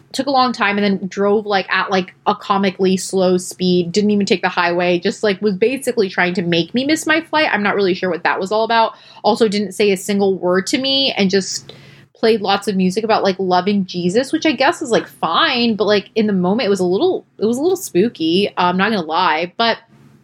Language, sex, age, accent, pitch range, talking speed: English, female, 20-39, American, 180-215 Hz, 245 wpm